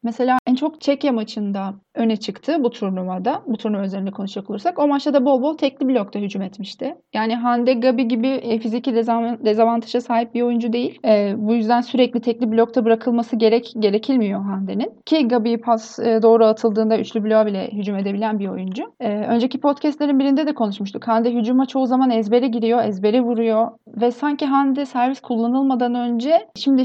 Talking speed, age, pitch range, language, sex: 170 wpm, 30-49, 225-265 Hz, Turkish, female